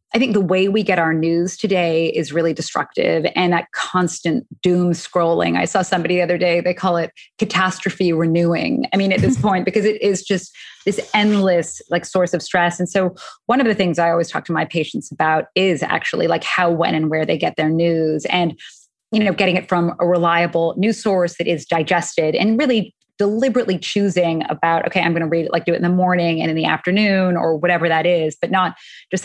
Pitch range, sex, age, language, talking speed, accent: 165-190 Hz, female, 20-39, English, 220 wpm, American